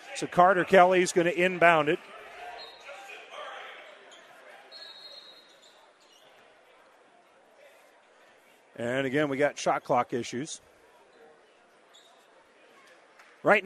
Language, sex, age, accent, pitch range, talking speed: English, male, 50-69, American, 130-185 Hz, 70 wpm